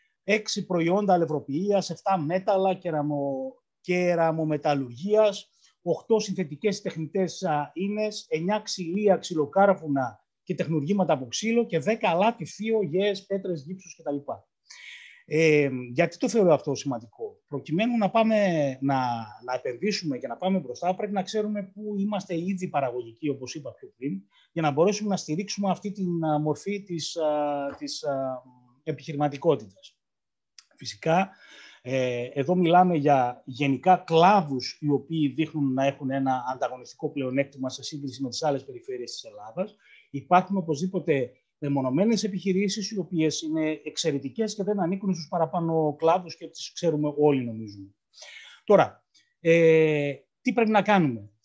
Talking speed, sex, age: 130 wpm, male, 30-49